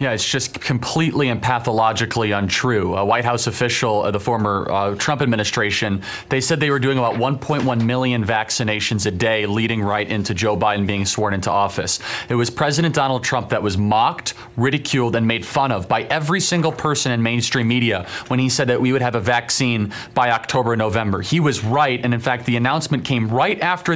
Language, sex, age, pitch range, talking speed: English, male, 30-49, 115-145 Hz, 200 wpm